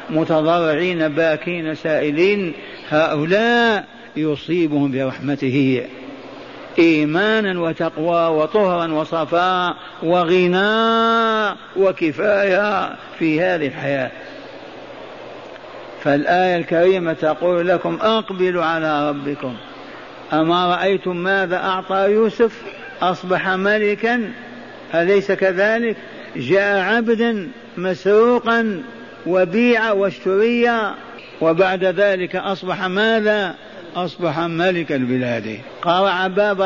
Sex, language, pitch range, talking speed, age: male, Arabic, 170-205 Hz, 75 wpm, 50-69